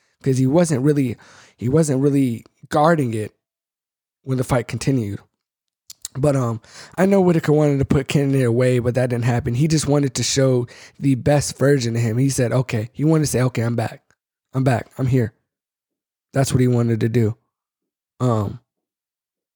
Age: 20-39